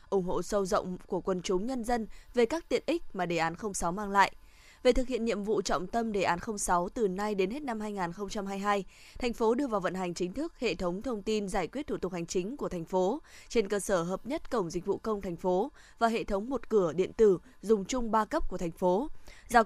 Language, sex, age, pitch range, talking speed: Vietnamese, female, 20-39, 185-230 Hz, 250 wpm